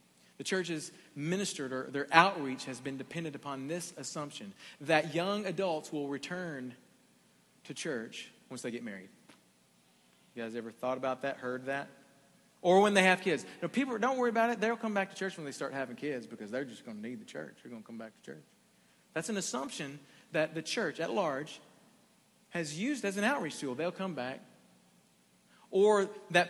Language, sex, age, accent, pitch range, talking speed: English, male, 40-59, American, 140-195 Hz, 195 wpm